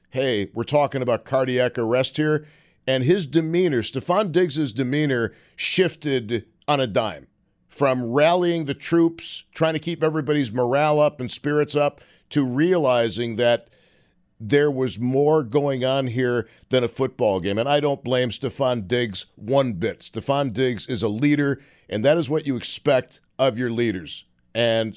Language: English